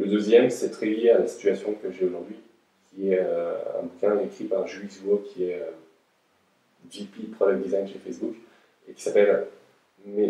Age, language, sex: 20-39, English, male